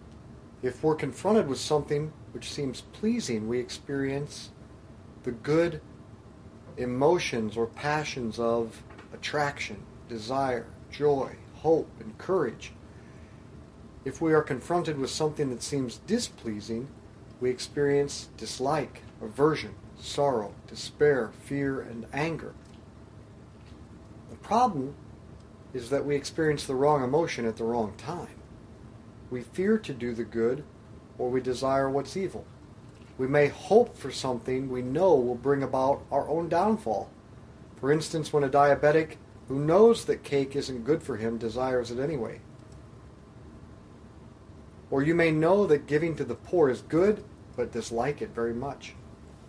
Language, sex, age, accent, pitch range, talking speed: English, male, 40-59, American, 115-150 Hz, 130 wpm